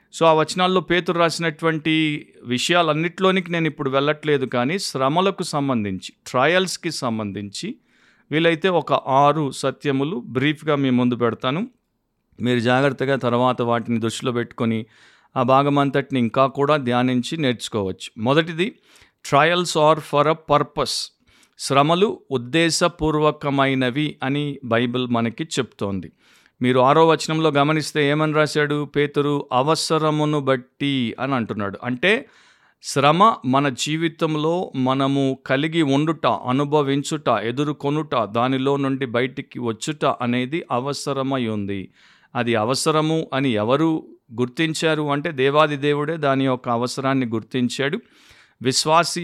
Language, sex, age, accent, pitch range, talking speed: Telugu, male, 50-69, native, 125-155 Hz, 100 wpm